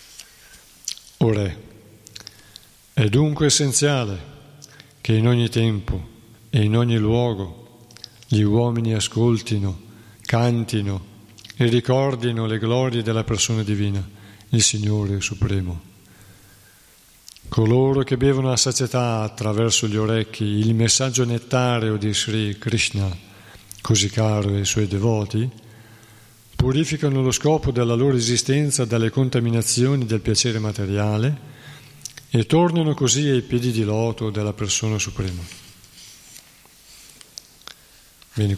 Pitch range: 105-120 Hz